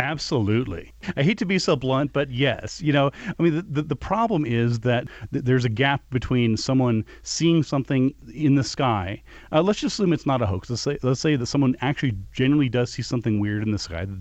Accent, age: American, 30-49